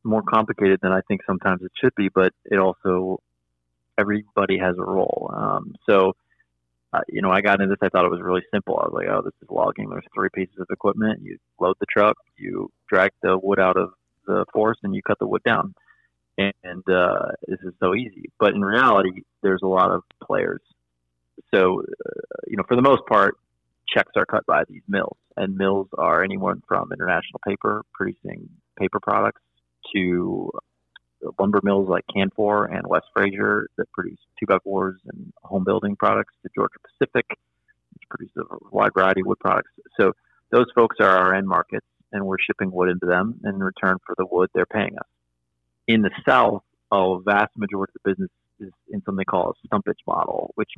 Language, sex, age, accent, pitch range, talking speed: English, male, 30-49, American, 90-100 Hz, 195 wpm